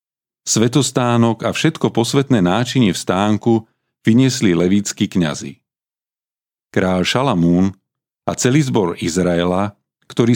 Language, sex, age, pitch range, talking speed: Slovak, male, 40-59, 90-120 Hz, 100 wpm